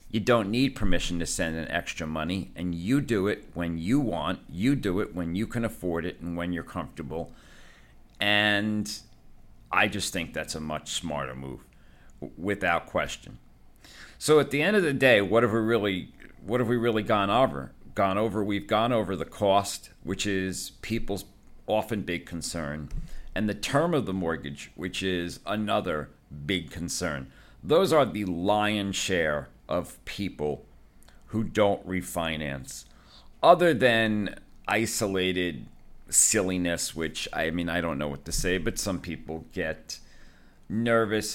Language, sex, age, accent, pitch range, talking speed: English, male, 50-69, American, 80-105 Hz, 155 wpm